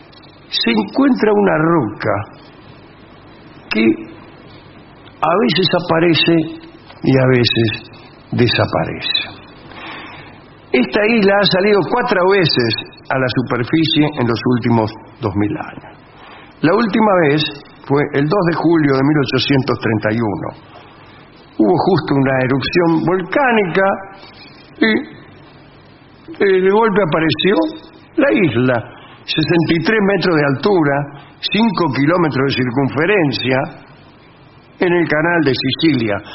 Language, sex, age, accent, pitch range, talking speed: English, male, 60-79, Argentinian, 125-170 Hz, 100 wpm